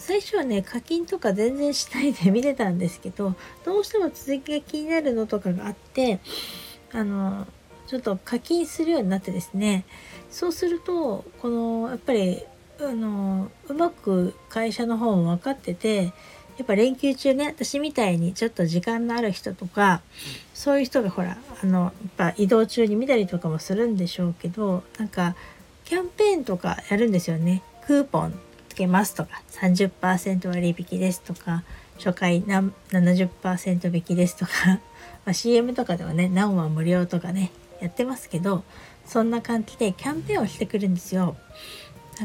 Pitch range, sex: 180-235 Hz, female